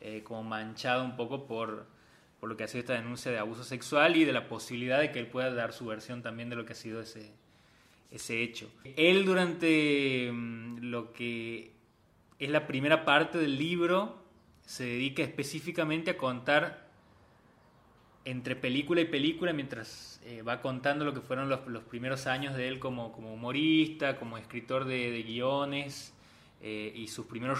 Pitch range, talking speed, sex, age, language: 115-145 Hz, 175 wpm, male, 20-39, Spanish